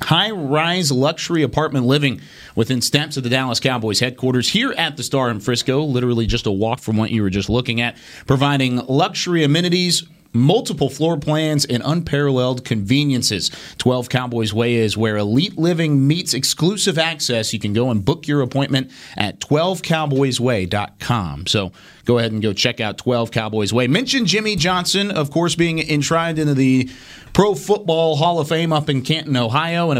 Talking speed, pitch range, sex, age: 170 wpm, 115-155 Hz, male, 30-49